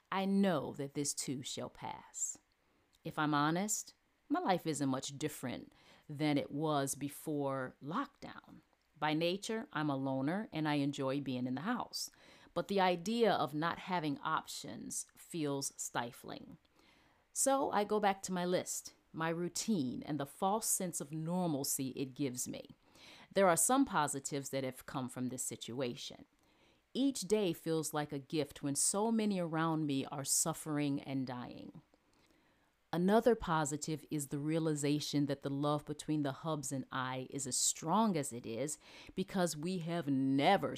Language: Ukrainian